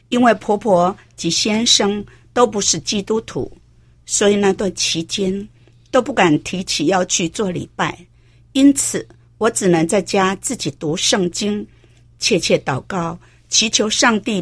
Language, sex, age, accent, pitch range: Chinese, female, 50-69, American, 150-220 Hz